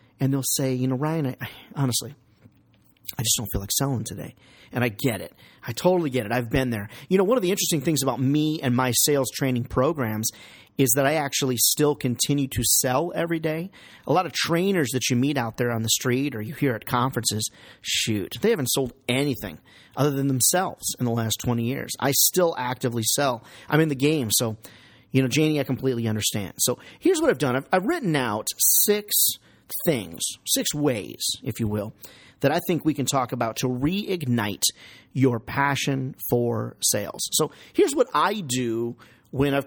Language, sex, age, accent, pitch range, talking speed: English, male, 40-59, American, 120-150 Hz, 195 wpm